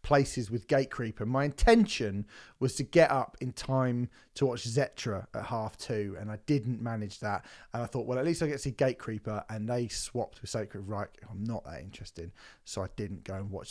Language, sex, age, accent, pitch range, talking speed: English, male, 30-49, British, 100-135 Hz, 215 wpm